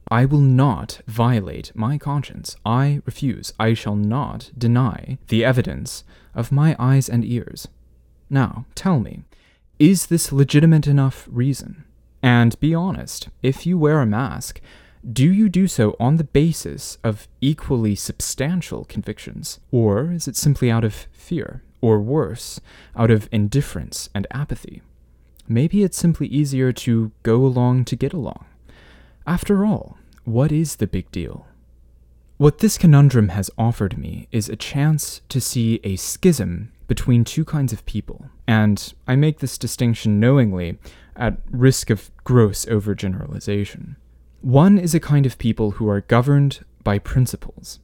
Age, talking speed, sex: 20-39, 145 wpm, male